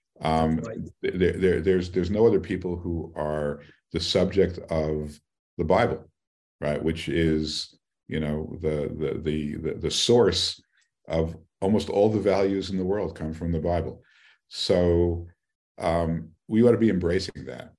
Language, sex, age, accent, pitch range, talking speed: Hebrew, male, 50-69, American, 80-95 Hz, 155 wpm